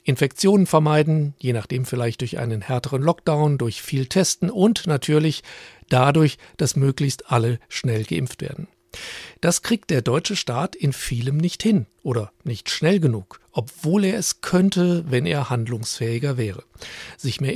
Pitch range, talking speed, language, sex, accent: 125-170 Hz, 150 wpm, German, male, German